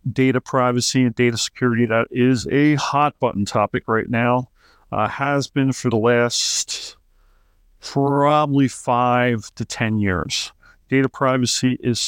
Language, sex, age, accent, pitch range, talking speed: English, male, 50-69, American, 110-130 Hz, 135 wpm